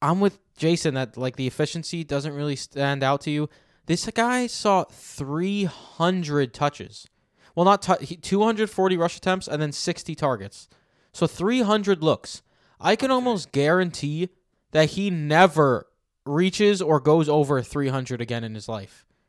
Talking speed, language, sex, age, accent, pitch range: 145 wpm, English, male, 20-39, American, 140-180 Hz